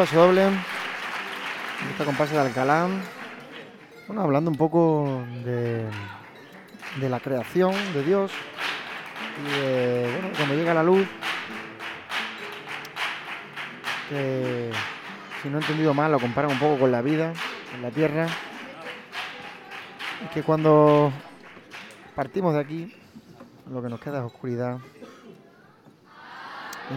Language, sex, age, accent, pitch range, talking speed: Spanish, male, 30-49, Spanish, 125-155 Hz, 115 wpm